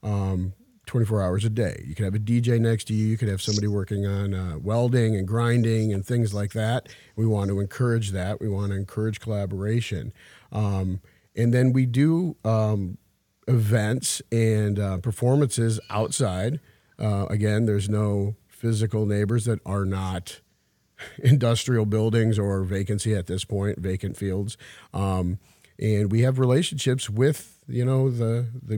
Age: 50-69